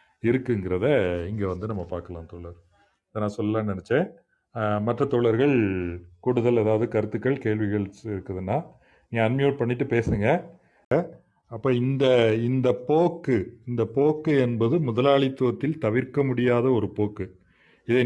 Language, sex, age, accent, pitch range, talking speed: Tamil, male, 40-59, native, 110-135 Hz, 110 wpm